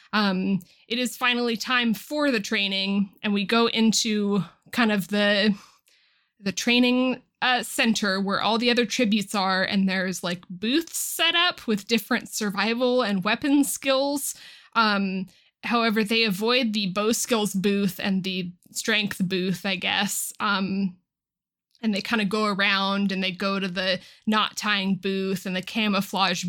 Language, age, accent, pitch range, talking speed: English, 20-39, American, 195-230 Hz, 155 wpm